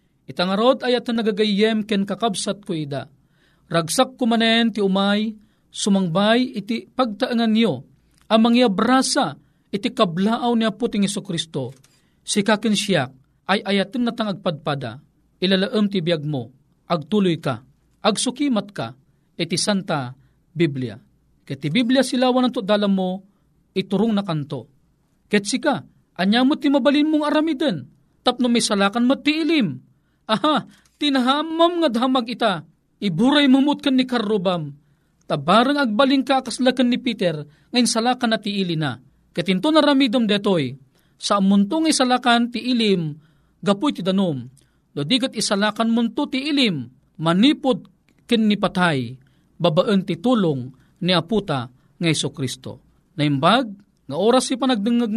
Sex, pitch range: male, 160-240 Hz